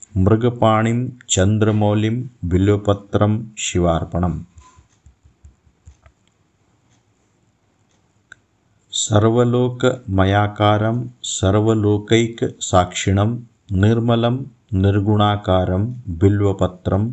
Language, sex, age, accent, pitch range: Hindi, male, 50-69, native, 95-110 Hz